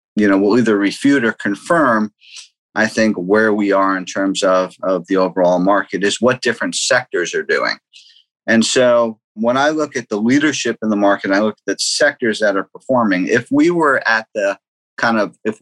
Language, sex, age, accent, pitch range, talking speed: English, male, 50-69, American, 100-120 Hz, 200 wpm